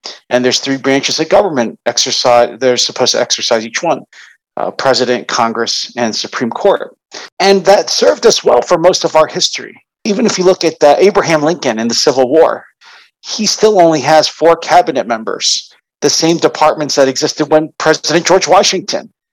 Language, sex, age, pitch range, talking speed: English, male, 50-69, 130-170 Hz, 175 wpm